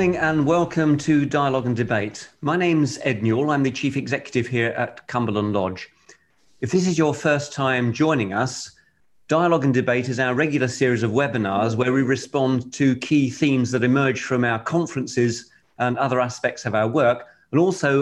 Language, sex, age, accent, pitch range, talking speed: English, male, 40-59, British, 120-140 Hz, 180 wpm